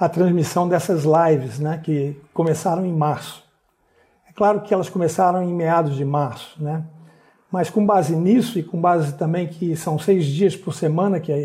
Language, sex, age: Portuguese, male, 60-79